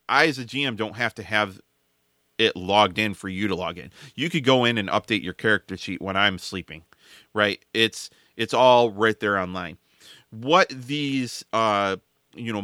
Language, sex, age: English, male, 30-49